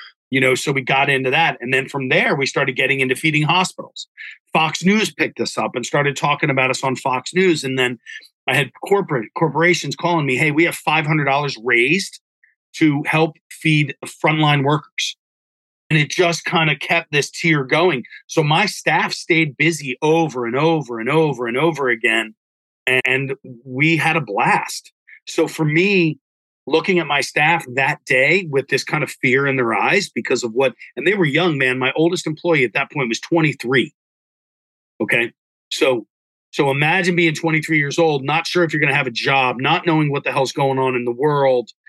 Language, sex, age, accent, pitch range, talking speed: English, male, 40-59, American, 130-165 Hz, 195 wpm